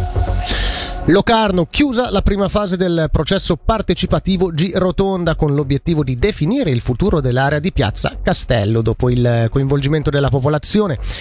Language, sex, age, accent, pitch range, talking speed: Italian, male, 30-49, native, 140-200 Hz, 135 wpm